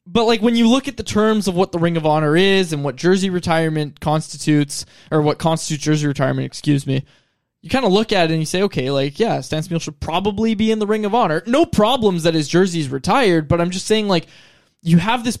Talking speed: 250 wpm